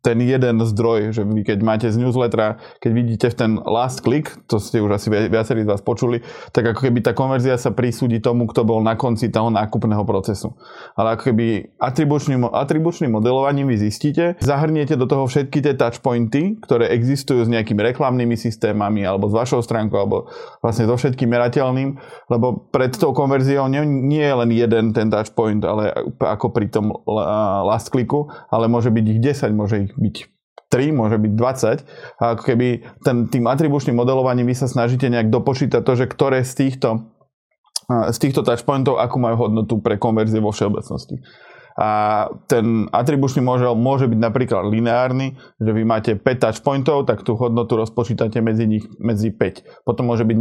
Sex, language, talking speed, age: male, Slovak, 175 wpm, 20-39